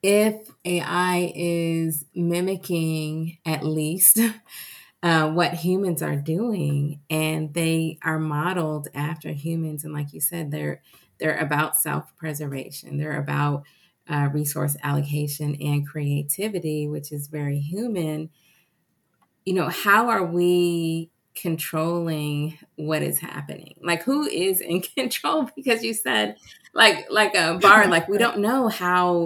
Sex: female